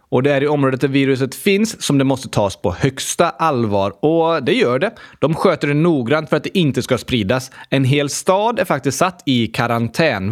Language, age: Swedish, 20-39